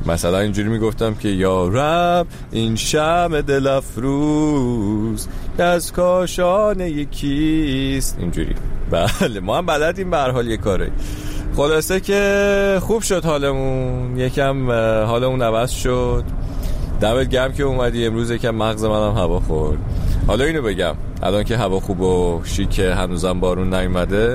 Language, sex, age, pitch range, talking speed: Persian, male, 30-49, 95-140 Hz, 130 wpm